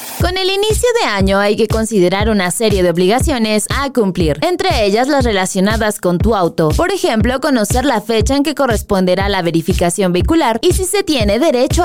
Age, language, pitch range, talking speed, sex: 20-39, Spanish, 195-300 Hz, 185 wpm, female